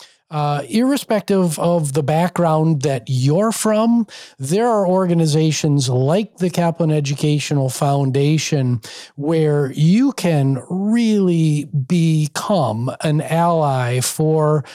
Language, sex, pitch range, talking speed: English, male, 135-175 Hz, 100 wpm